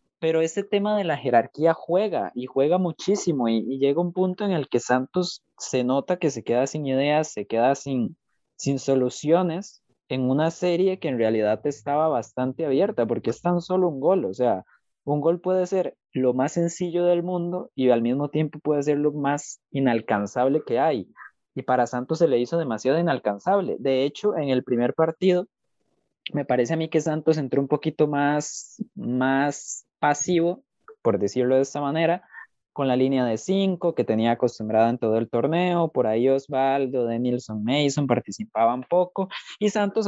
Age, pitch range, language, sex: 20-39, 125-175 Hz, Spanish, male